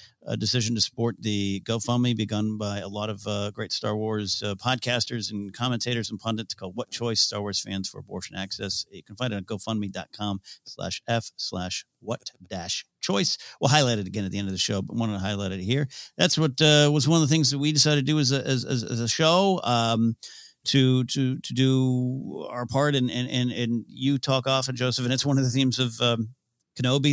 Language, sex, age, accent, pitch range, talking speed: English, male, 50-69, American, 100-130 Hz, 230 wpm